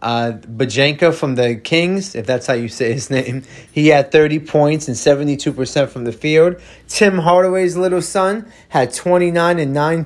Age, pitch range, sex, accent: 30-49, 125-160 Hz, male, American